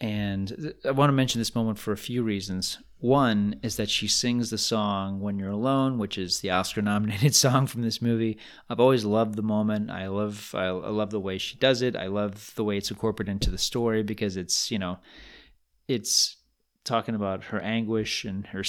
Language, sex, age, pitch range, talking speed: English, male, 30-49, 100-120 Hz, 200 wpm